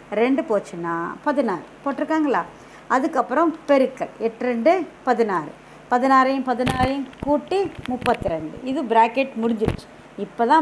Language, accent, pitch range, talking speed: Tamil, native, 225-295 Hz, 95 wpm